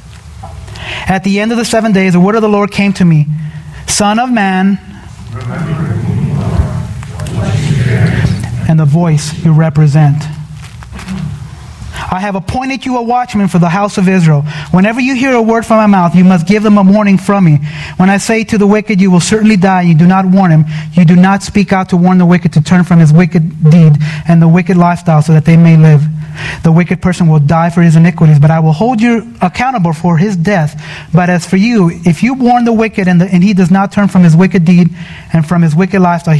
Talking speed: 215 wpm